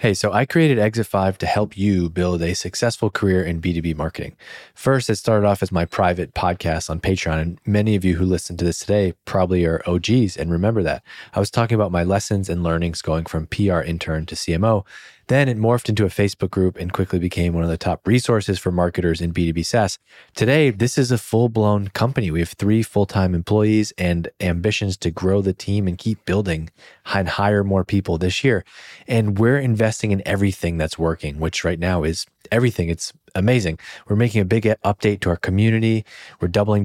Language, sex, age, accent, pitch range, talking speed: English, male, 20-39, American, 90-110 Hz, 205 wpm